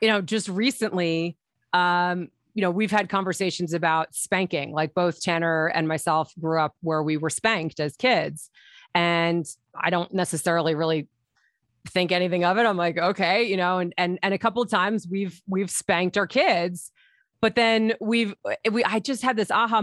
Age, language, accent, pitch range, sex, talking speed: 30-49, English, American, 170-215 Hz, female, 180 wpm